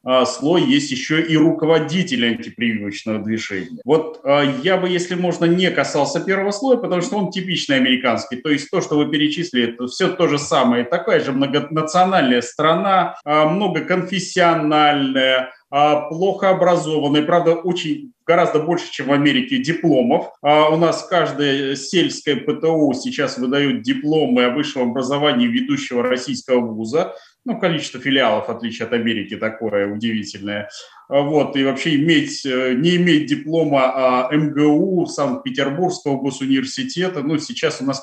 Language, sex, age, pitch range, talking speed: Russian, male, 30-49, 140-180 Hz, 135 wpm